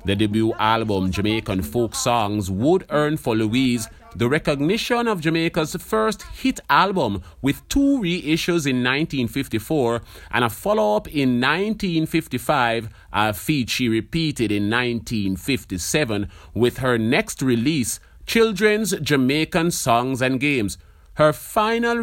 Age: 30-49